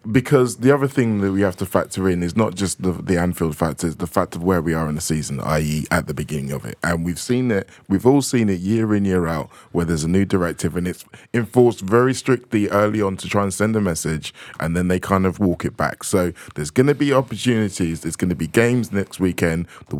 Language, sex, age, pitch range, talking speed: English, male, 20-39, 80-105 Hz, 250 wpm